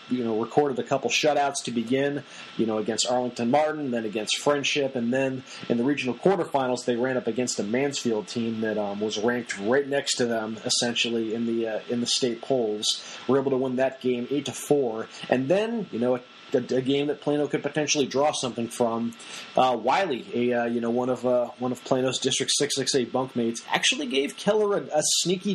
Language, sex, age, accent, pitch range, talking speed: English, male, 30-49, American, 120-150 Hz, 210 wpm